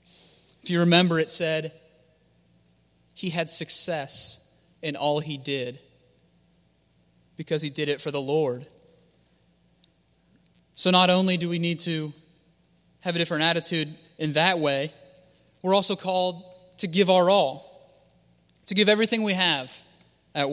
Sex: male